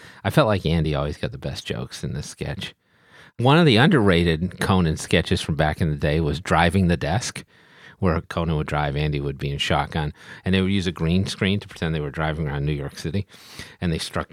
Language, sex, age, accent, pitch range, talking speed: English, male, 30-49, American, 85-115 Hz, 230 wpm